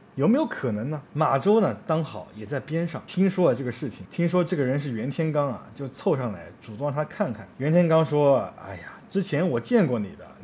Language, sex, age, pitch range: Chinese, male, 20-39, 130-185 Hz